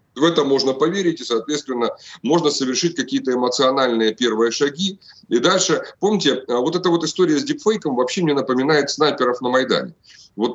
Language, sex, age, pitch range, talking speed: Russian, male, 30-49, 125-170 Hz, 160 wpm